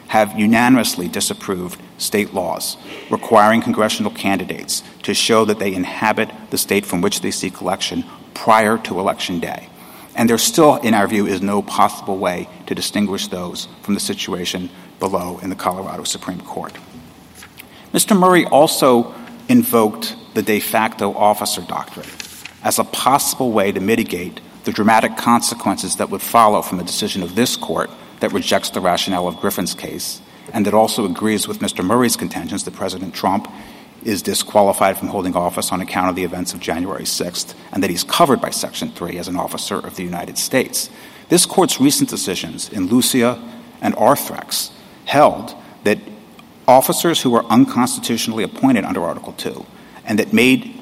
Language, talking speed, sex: English, 165 wpm, male